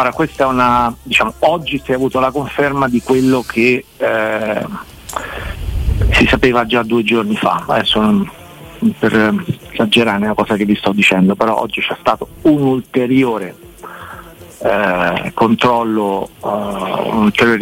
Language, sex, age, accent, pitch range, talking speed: Italian, male, 50-69, native, 105-125 Hz, 135 wpm